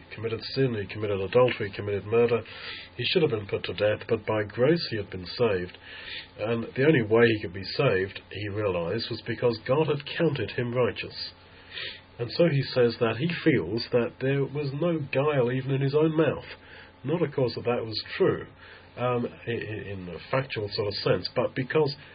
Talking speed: 200 wpm